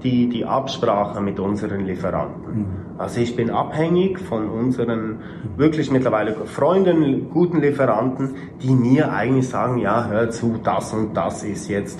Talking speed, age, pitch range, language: 145 wpm, 30-49, 100-125 Hz, German